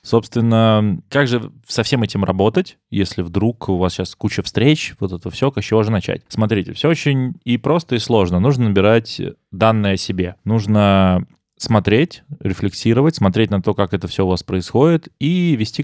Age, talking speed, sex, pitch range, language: 20-39, 180 wpm, male, 95-125 Hz, Russian